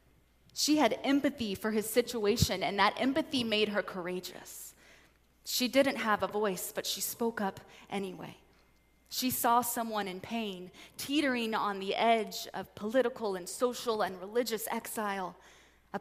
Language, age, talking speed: English, 20-39, 145 wpm